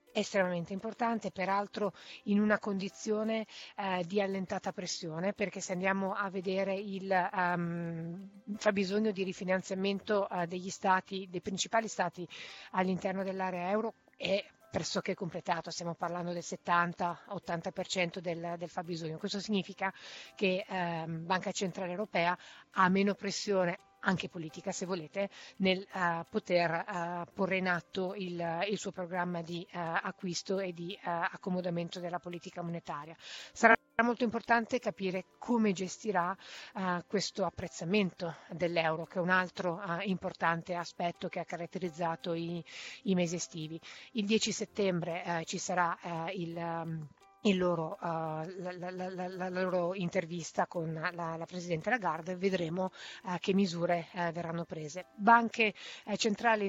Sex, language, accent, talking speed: female, Italian, native, 130 wpm